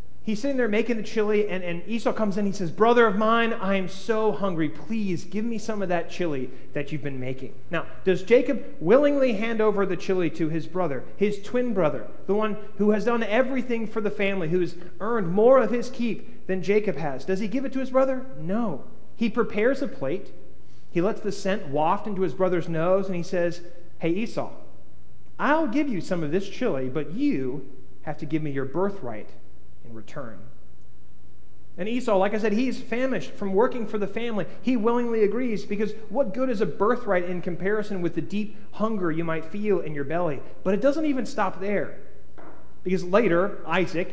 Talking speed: 205 wpm